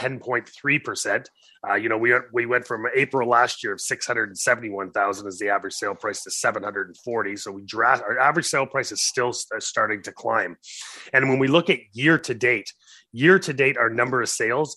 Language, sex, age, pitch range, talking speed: English, male, 30-49, 110-140 Hz, 200 wpm